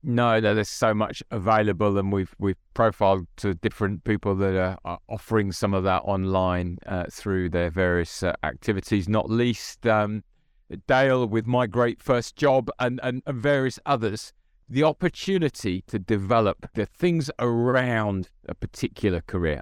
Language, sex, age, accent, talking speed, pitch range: English, male, 40-59, British, 155 wpm, 95-120 Hz